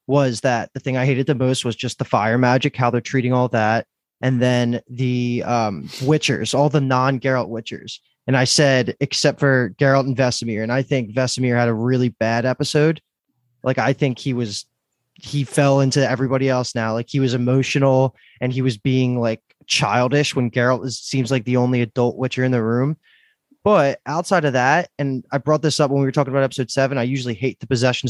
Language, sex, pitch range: English, male, 125-135 Hz